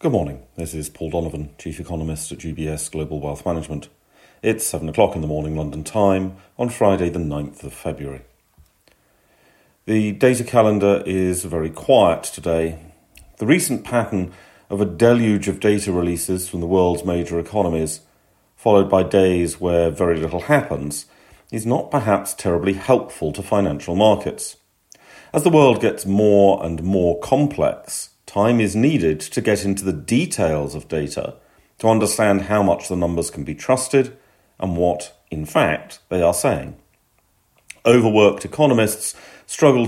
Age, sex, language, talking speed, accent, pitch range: 40-59, male, English, 150 wpm, British, 85-105 Hz